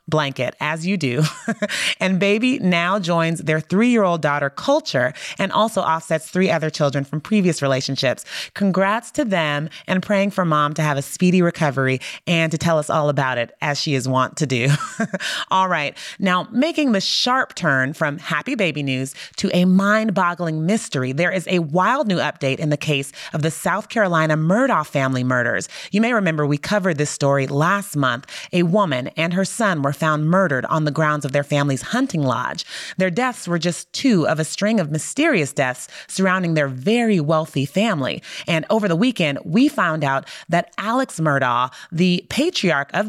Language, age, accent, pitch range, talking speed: English, 30-49, American, 150-205 Hz, 185 wpm